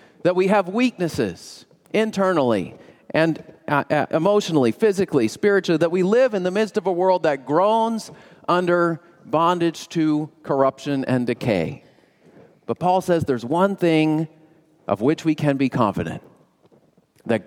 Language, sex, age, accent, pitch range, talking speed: English, male, 40-59, American, 145-200 Hz, 140 wpm